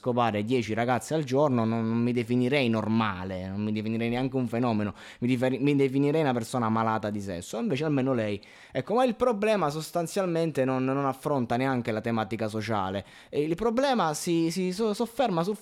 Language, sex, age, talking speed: Italian, male, 20-39, 175 wpm